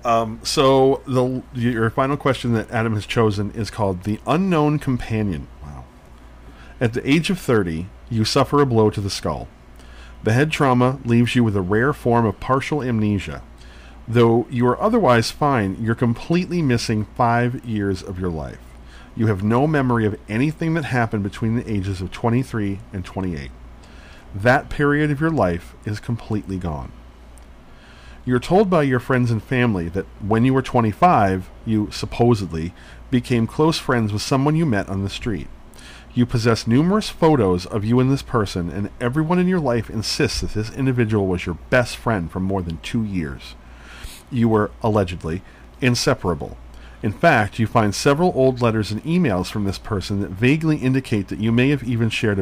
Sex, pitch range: male, 95-125 Hz